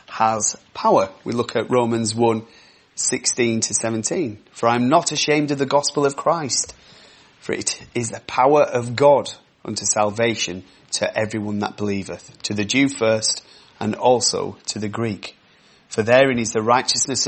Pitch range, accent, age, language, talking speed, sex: 110-140 Hz, British, 30-49, English, 165 wpm, male